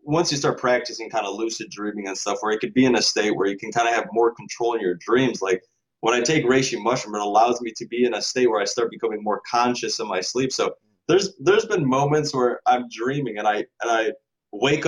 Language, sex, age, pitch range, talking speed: English, male, 20-39, 120-145 Hz, 260 wpm